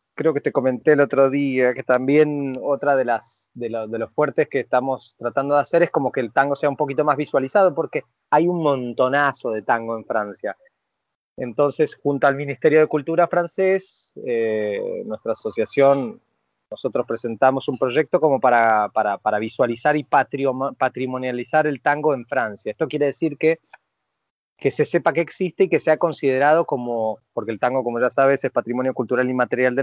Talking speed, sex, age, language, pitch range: 175 wpm, male, 20-39, Spanish, 125-160 Hz